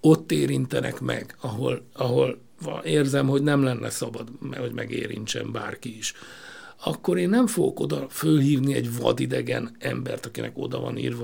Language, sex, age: Hungarian, male, 60-79